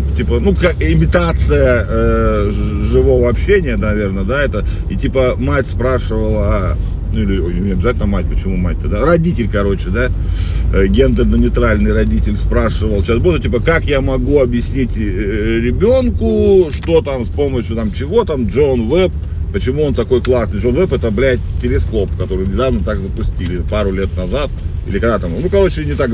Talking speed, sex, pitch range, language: 165 wpm, male, 85-115 Hz, Russian